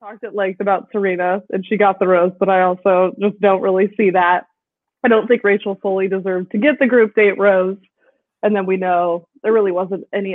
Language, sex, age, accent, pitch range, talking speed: English, female, 20-39, American, 195-250 Hz, 220 wpm